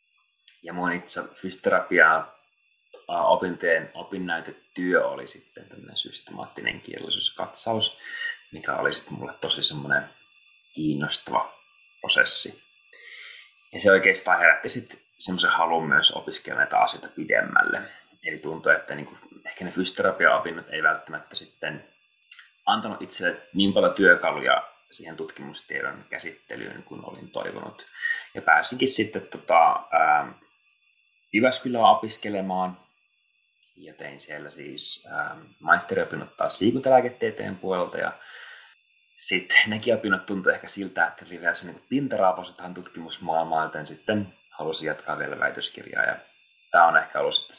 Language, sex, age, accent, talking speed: Finnish, male, 30-49, native, 115 wpm